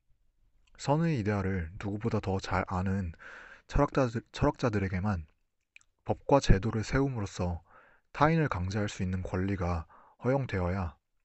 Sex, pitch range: male, 90-120 Hz